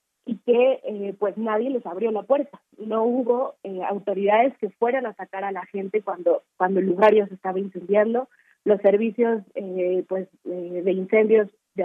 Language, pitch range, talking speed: Spanish, 195-230 Hz, 180 wpm